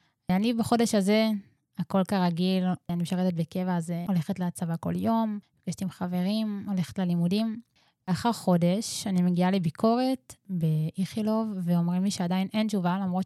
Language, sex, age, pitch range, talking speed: Hebrew, female, 20-39, 175-205 Hz, 135 wpm